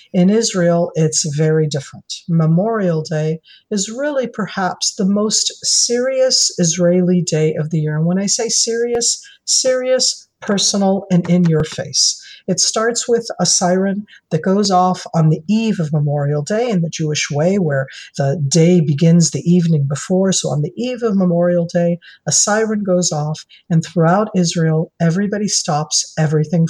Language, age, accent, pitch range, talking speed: English, 50-69, American, 165-215 Hz, 160 wpm